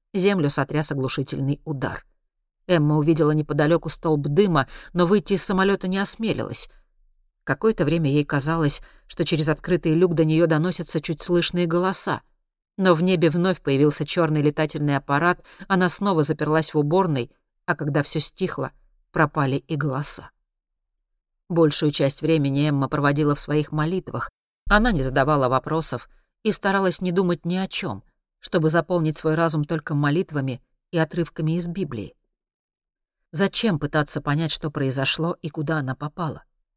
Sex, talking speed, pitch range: female, 140 wpm, 145-175 Hz